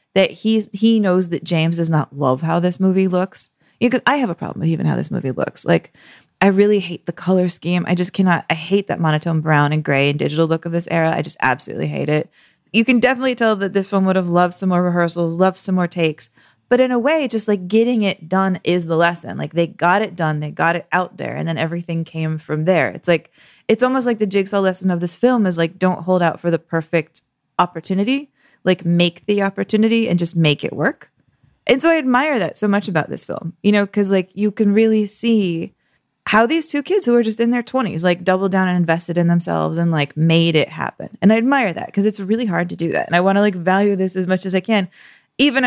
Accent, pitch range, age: American, 165-210 Hz, 20-39